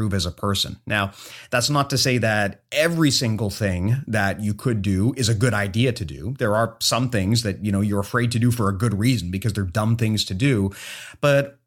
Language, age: English, 30-49